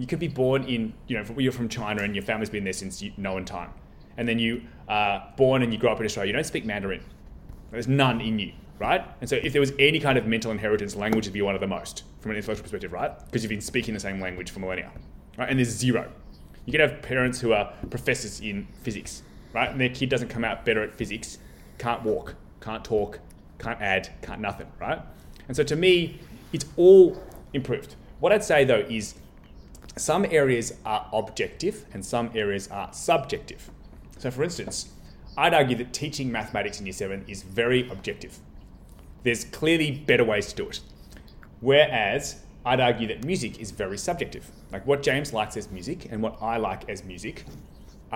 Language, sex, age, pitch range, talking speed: English, male, 20-39, 100-130 Hz, 205 wpm